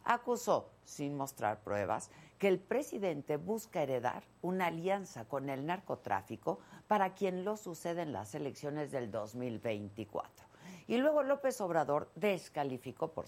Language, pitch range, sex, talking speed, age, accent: Spanish, 125-190 Hz, female, 130 wpm, 50-69, Mexican